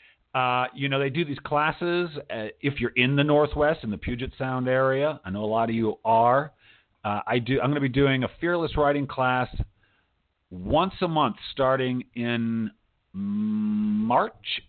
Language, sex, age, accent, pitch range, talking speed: English, male, 50-69, American, 110-145 Hz, 170 wpm